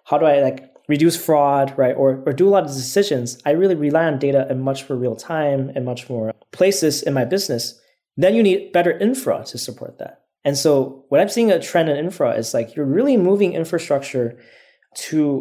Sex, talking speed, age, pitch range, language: male, 215 wpm, 20-39, 135-170 Hz, English